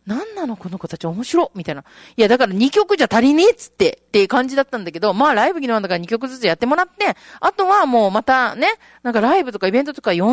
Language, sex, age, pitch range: Japanese, female, 40-59, 195-320 Hz